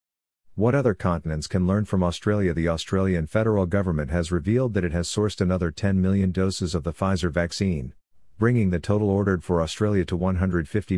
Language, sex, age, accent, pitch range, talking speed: English, male, 50-69, American, 85-100 Hz, 180 wpm